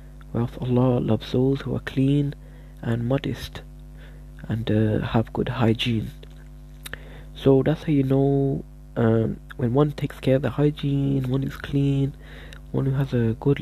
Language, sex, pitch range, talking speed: English, male, 120-140 Hz, 155 wpm